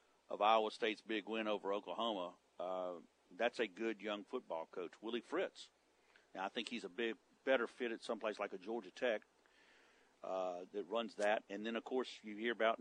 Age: 50-69